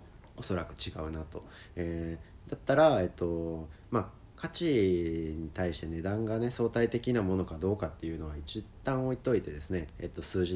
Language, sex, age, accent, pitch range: Japanese, male, 40-59, native, 80-105 Hz